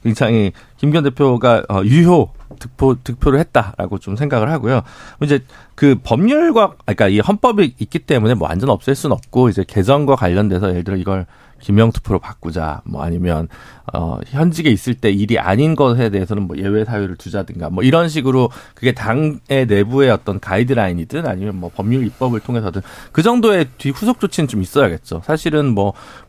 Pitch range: 100-150 Hz